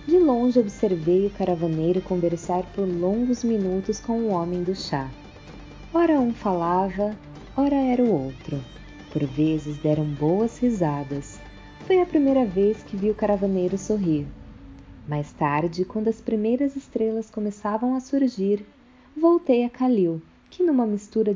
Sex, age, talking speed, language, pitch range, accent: female, 20-39, 140 wpm, Portuguese, 160-225 Hz, Brazilian